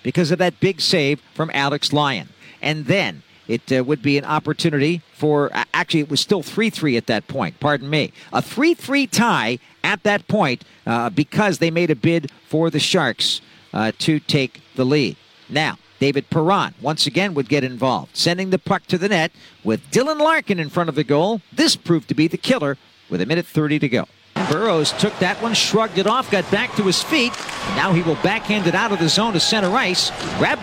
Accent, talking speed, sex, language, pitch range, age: American, 210 wpm, male, English, 150-250 Hz, 50-69